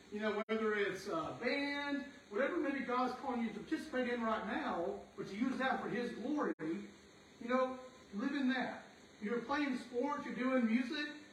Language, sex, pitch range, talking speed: English, male, 225-270 Hz, 180 wpm